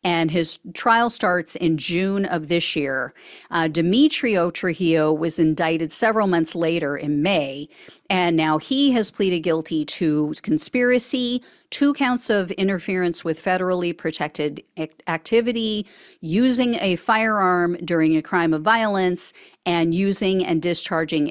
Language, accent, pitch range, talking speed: English, American, 160-195 Hz, 130 wpm